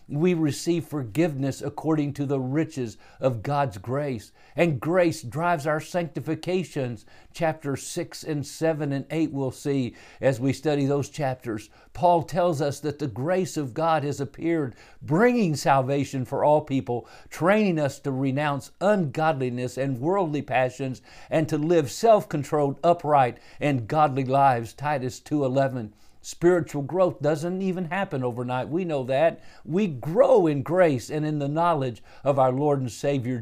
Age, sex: 50-69, male